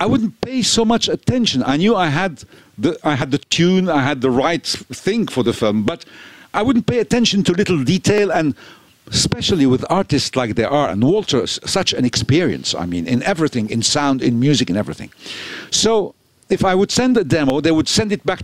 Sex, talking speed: male, 205 wpm